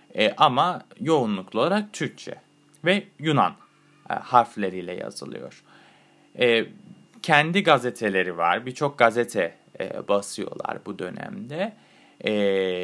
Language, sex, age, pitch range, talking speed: Turkish, male, 30-49, 105-175 Hz, 95 wpm